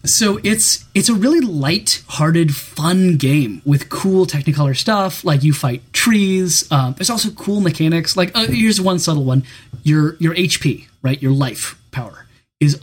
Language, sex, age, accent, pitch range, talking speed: English, male, 20-39, American, 130-170 Hz, 165 wpm